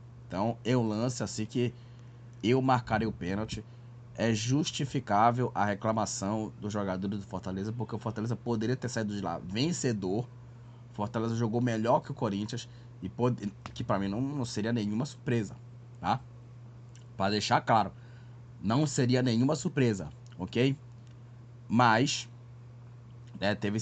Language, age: Portuguese, 20-39